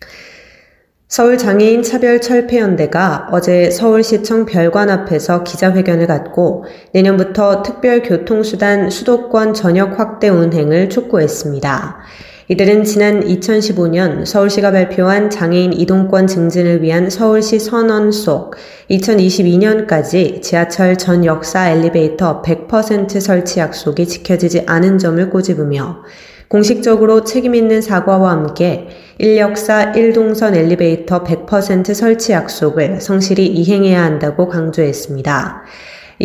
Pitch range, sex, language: 175-210 Hz, female, Korean